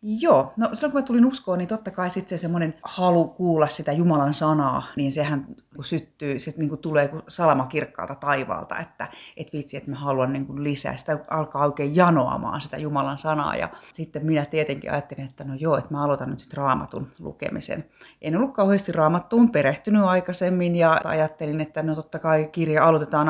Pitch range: 145-180 Hz